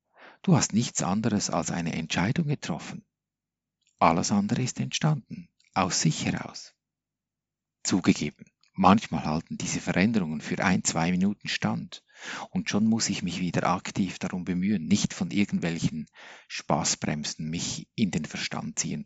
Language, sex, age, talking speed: German, male, 50-69, 135 wpm